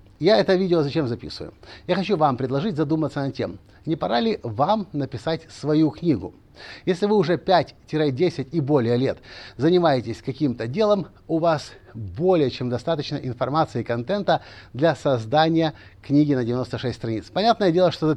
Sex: male